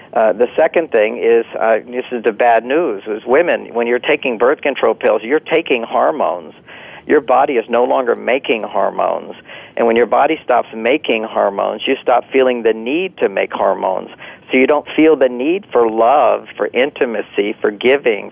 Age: 50-69